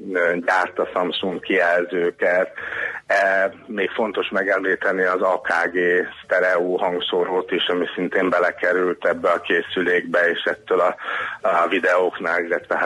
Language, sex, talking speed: Hungarian, male, 115 wpm